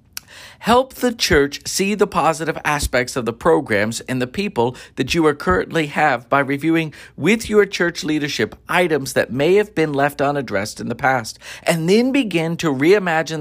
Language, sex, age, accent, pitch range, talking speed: English, male, 50-69, American, 125-175 Hz, 175 wpm